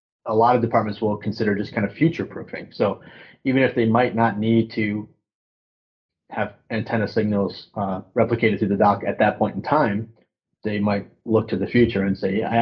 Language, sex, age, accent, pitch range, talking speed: English, male, 30-49, American, 100-115 Hz, 190 wpm